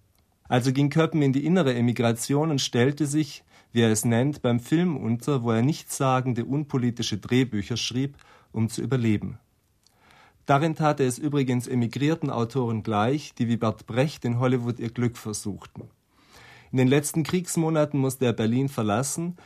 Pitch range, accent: 115-140 Hz, German